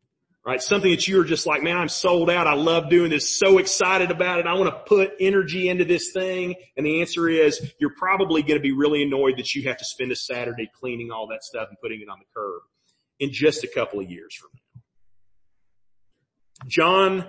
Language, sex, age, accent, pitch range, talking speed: English, male, 40-59, American, 130-190 Hz, 220 wpm